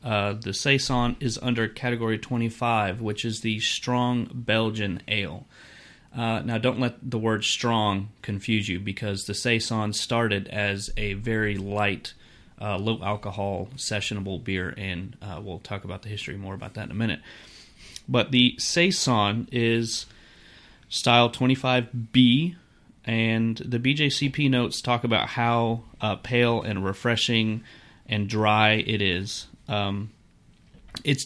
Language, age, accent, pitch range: English, 30-49, American, 105-125 Hz